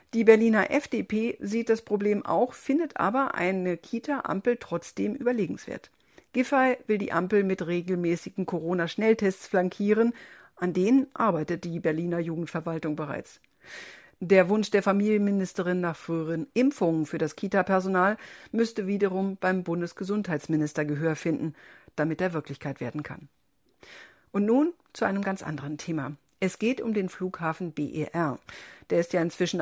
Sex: female